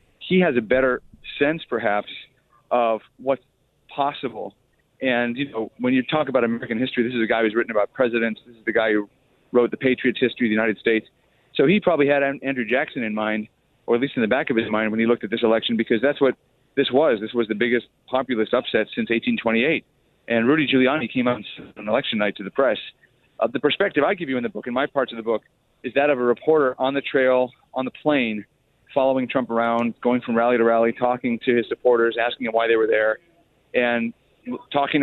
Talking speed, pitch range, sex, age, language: 225 wpm, 115-140 Hz, male, 40-59, English